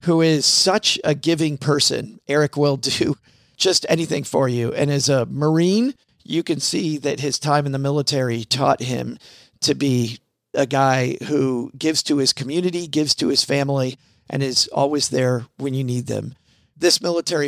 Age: 40-59